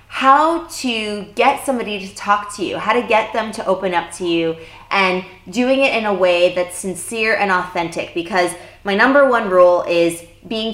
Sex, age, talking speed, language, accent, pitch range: female, 20-39, 190 wpm, English, American, 175-225 Hz